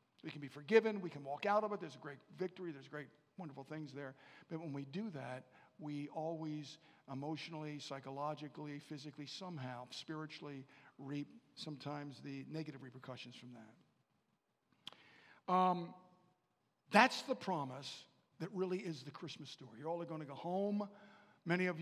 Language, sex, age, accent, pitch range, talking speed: English, male, 50-69, American, 145-175 Hz, 155 wpm